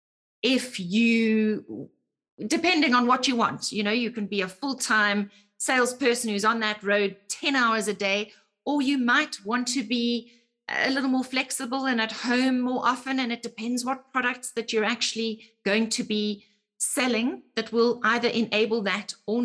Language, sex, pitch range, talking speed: English, female, 195-240 Hz, 175 wpm